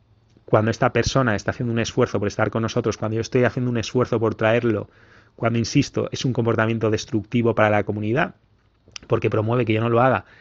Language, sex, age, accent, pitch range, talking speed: English, male, 30-49, Spanish, 105-125 Hz, 200 wpm